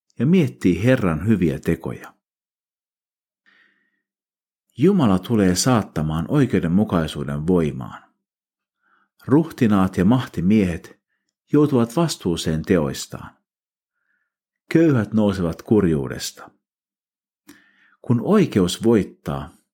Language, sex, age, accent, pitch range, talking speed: Finnish, male, 50-69, native, 85-130 Hz, 75 wpm